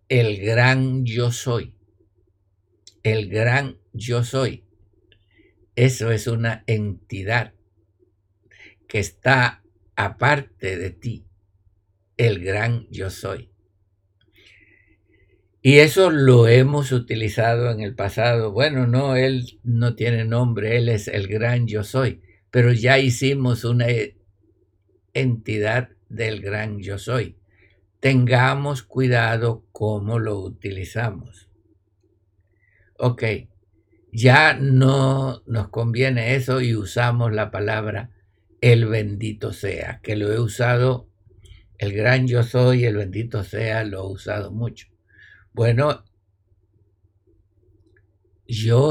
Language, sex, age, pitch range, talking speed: Spanish, male, 60-79, 100-120 Hz, 105 wpm